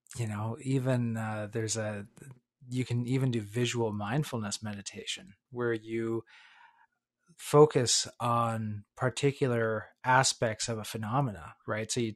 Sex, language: male, English